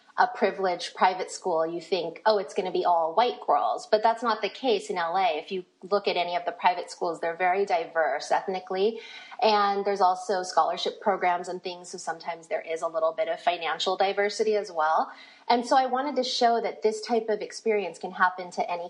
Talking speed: 215 wpm